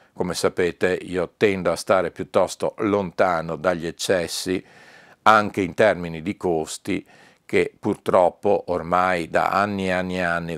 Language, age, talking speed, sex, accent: Italian, 50-69, 135 wpm, male, native